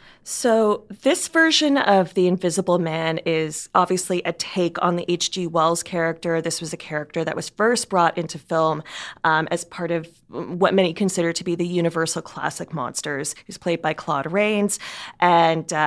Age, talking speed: 20-39, 170 wpm